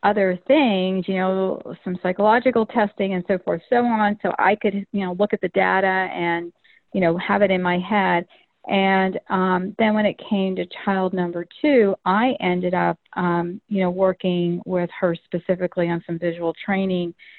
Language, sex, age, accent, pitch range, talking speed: English, female, 40-59, American, 180-205 Hz, 185 wpm